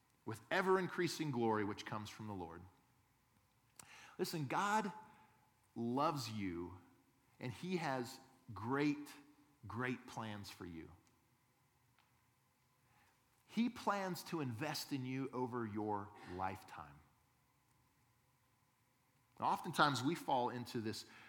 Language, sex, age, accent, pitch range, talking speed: English, male, 40-59, American, 115-145 Hz, 95 wpm